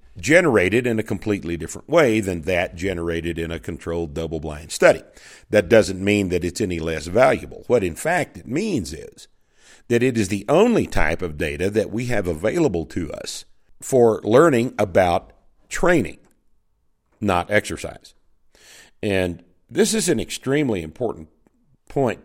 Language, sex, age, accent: English, male, 50-69, American